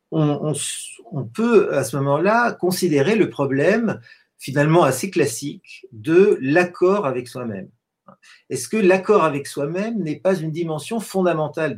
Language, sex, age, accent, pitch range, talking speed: French, male, 50-69, French, 135-195 Hz, 140 wpm